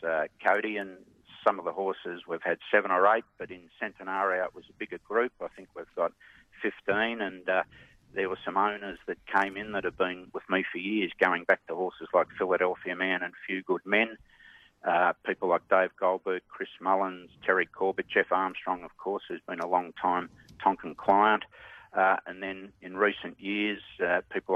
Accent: Australian